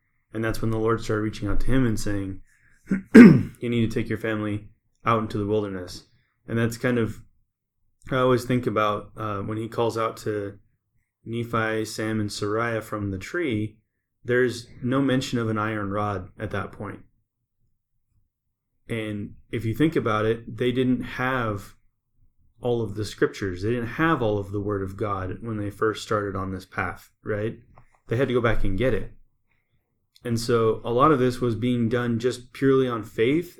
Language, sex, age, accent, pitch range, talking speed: English, male, 20-39, American, 105-115 Hz, 185 wpm